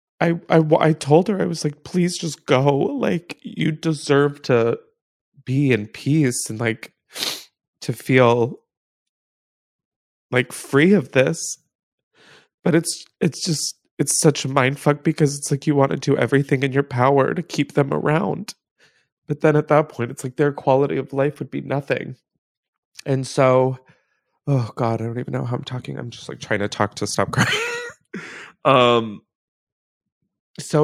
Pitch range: 110-150 Hz